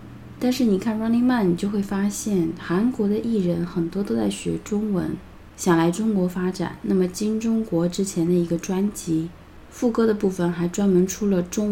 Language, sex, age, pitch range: Chinese, female, 20-39, 160-200 Hz